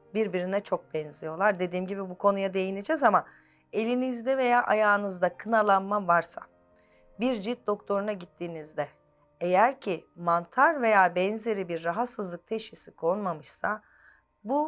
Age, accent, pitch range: 40-59, native, 170-220 Hz